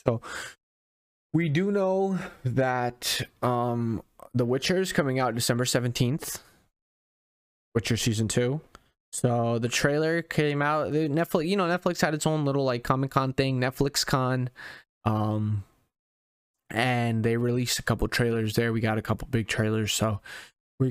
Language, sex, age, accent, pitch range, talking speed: English, male, 20-39, American, 125-155 Hz, 145 wpm